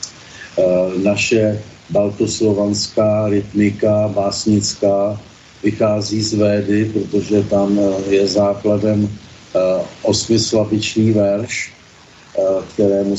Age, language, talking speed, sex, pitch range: 50-69, Slovak, 65 wpm, male, 100-110 Hz